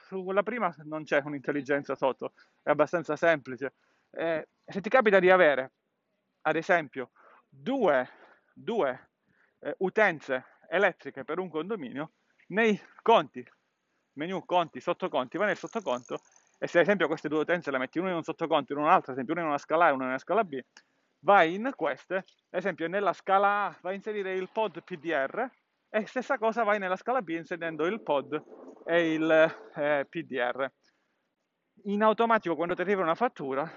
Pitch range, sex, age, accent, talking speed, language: 155-210 Hz, male, 40-59, native, 170 wpm, Italian